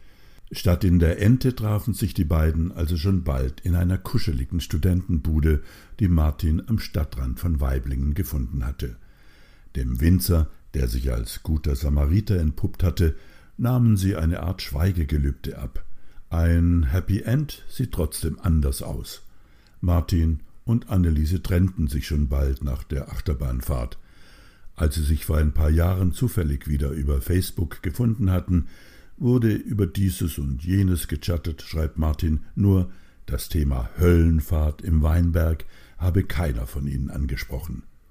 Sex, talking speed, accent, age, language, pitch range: male, 135 wpm, German, 60-79, German, 75-95 Hz